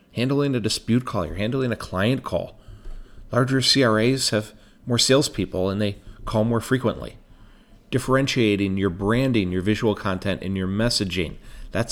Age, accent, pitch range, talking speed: 40-59, American, 95-120 Hz, 145 wpm